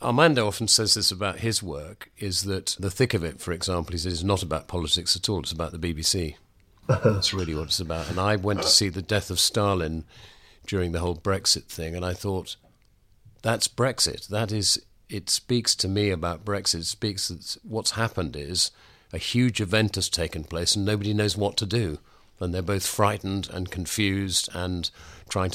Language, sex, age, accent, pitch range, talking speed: English, male, 50-69, British, 90-105 Hz, 195 wpm